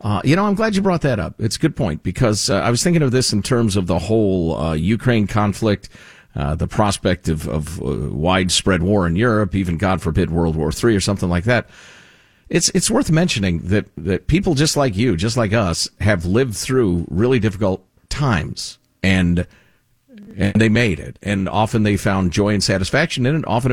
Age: 50-69